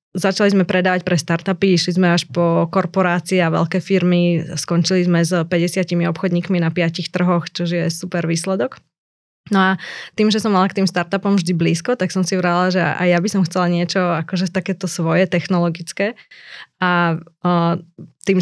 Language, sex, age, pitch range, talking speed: Slovak, female, 20-39, 170-185 Hz, 175 wpm